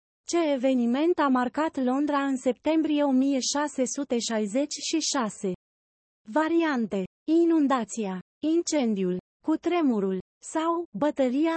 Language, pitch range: Romanian, 215-310 Hz